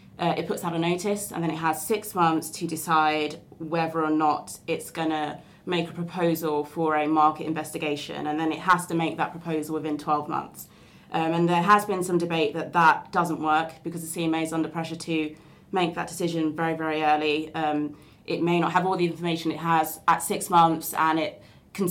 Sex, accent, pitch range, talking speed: female, British, 155-170 Hz, 215 wpm